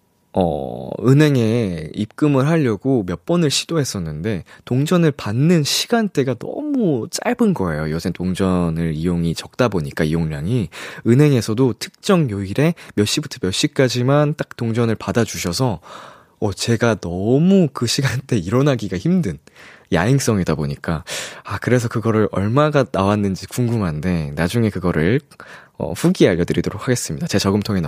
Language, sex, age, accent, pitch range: Korean, male, 20-39, native, 100-150 Hz